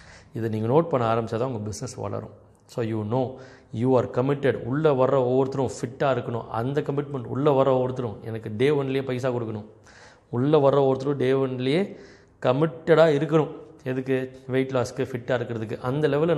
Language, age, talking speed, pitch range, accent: Tamil, 30-49, 160 wpm, 110-130 Hz, native